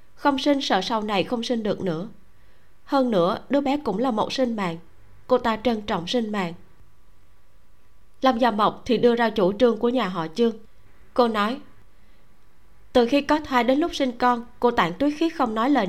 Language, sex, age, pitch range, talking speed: Vietnamese, female, 20-39, 190-255 Hz, 200 wpm